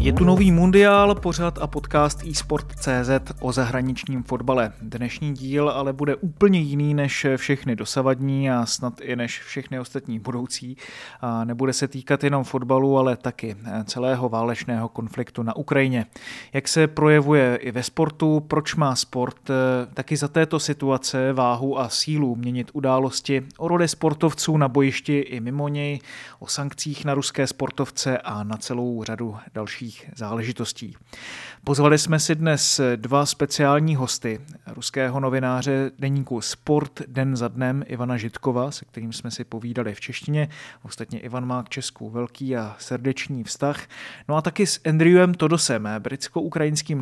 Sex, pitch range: male, 120-145 Hz